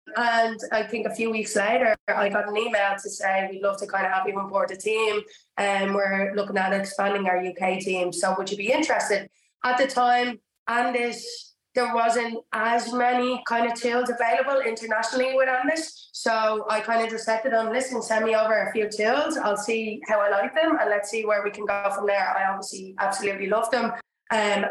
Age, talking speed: 20-39, 210 wpm